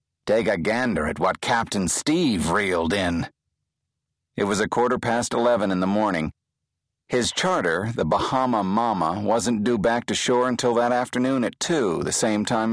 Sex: male